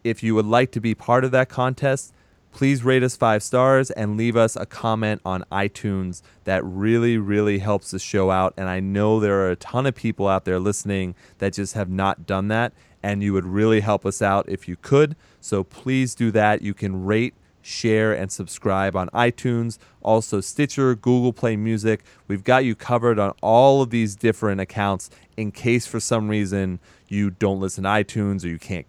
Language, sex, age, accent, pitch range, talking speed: English, male, 30-49, American, 95-115 Hz, 200 wpm